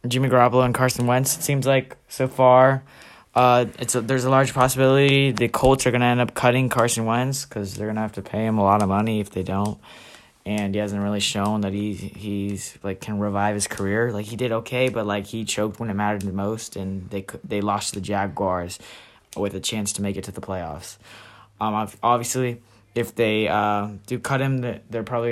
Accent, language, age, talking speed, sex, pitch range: American, English, 10-29, 225 wpm, male, 105-125 Hz